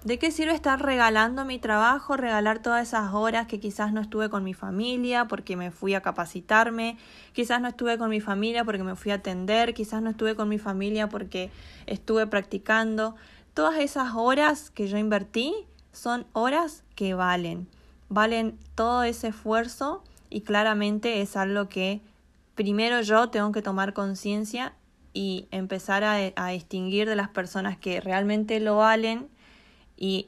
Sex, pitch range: female, 195-230 Hz